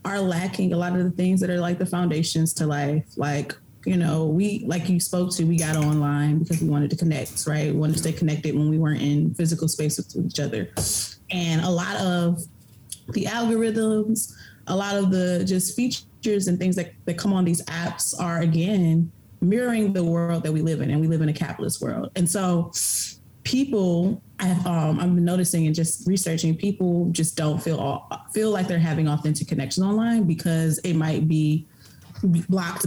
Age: 20-39